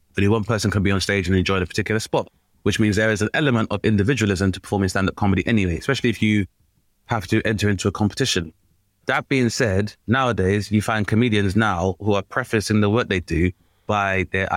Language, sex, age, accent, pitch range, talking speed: English, male, 20-39, British, 100-125 Hz, 210 wpm